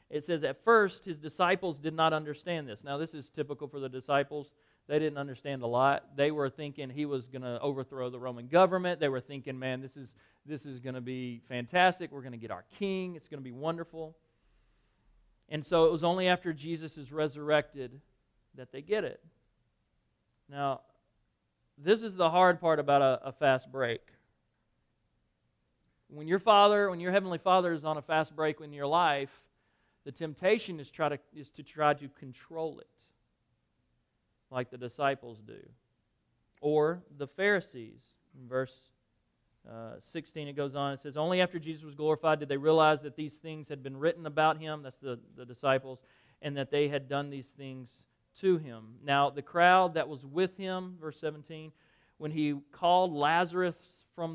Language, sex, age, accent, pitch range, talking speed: English, male, 40-59, American, 135-165 Hz, 180 wpm